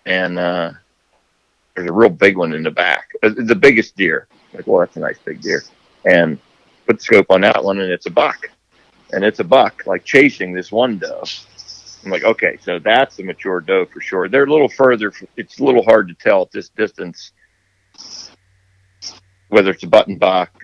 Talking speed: 205 wpm